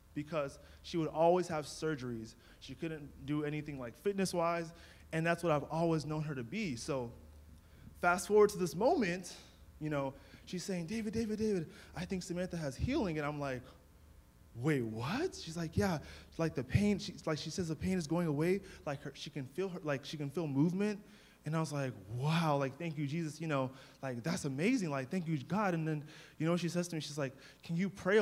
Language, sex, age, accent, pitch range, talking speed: English, male, 20-39, American, 135-180 Hz, 210 wpm